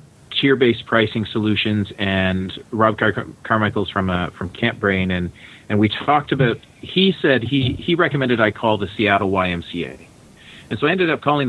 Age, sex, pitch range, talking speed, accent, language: 40-59, male, 100-125 Hz, 170 wpm, American, English